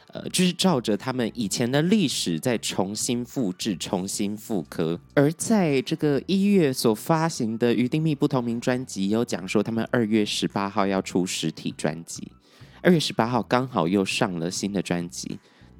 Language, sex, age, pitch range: Chinese, male, 30-49, 95-140 Hz